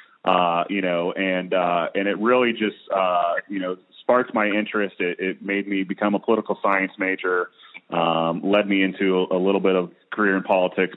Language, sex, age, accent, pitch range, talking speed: English, male, 30-49, American, 90-105 Hz, 190 wpm